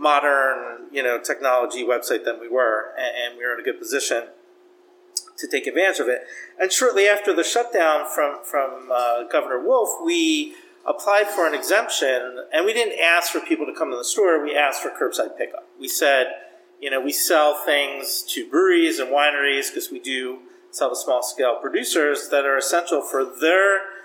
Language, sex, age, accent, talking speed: English, male, 40-59, American, 185 wpm